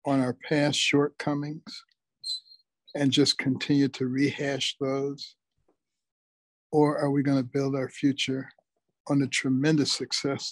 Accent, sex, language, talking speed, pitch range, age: American, male, English, 120 wpm, 130-145 Hz, 60-79